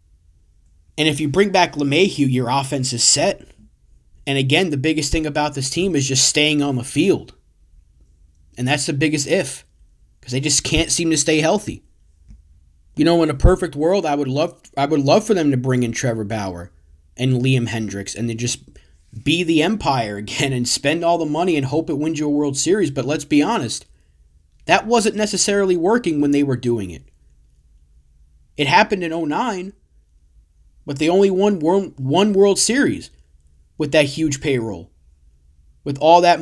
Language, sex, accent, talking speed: English, male, American, 180 wpm